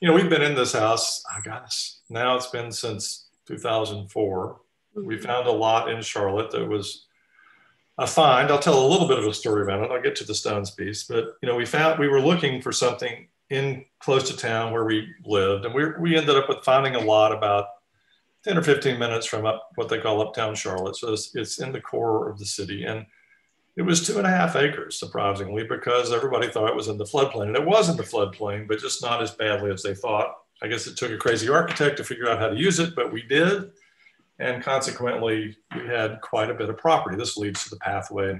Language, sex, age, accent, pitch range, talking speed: English, male, 50-69, American, 110-155 Hz, 235 wpm